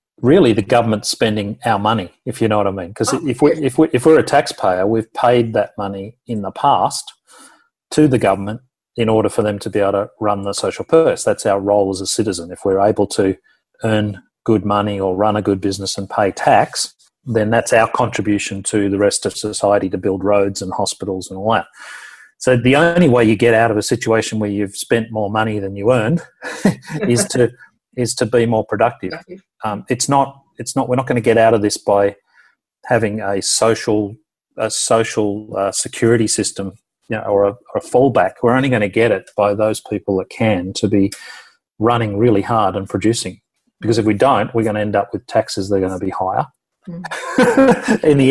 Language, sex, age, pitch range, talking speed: English, male, 40-59, 100-135 Hz, 215 wpm